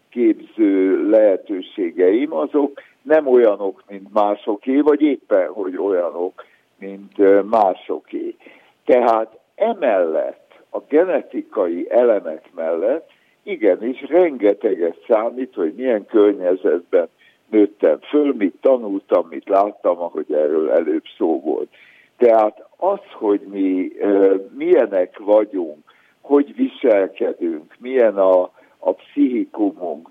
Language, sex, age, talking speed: Hungarian, male, 60-79, 95 wpm